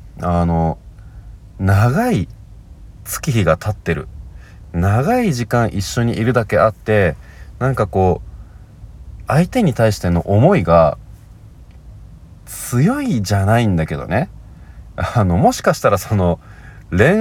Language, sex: Japanese, male